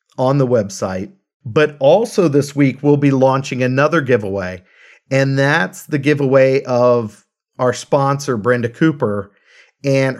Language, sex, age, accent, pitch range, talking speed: English, male, 40-59, American, 125-145 Hz, 130 wpm